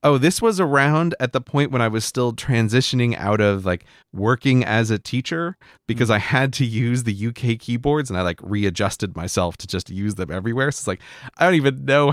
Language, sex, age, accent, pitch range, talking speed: English, male, 30-49, American, 95-135 Hz, 220 wpm